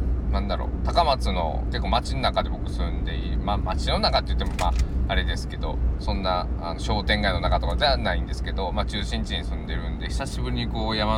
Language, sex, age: Japanese, male, 20-39